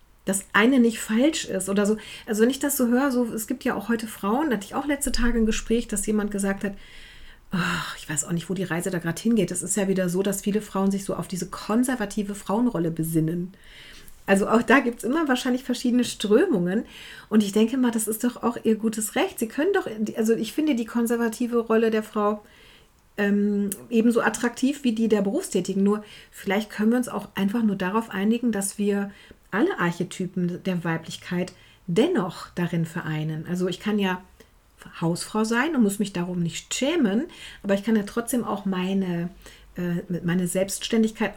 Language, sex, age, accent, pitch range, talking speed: German, female, 40-59, German, 190-230 Hz, 195 wpm